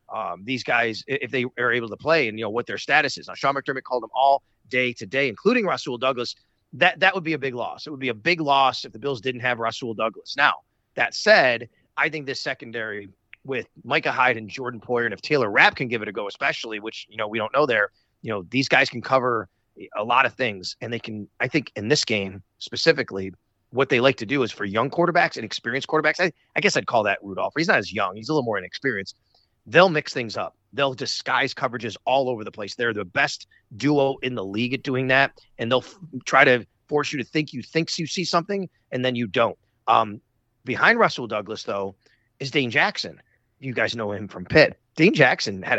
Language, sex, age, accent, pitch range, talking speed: English, male, 30-49, American, 110-140 Hz, 235 wpm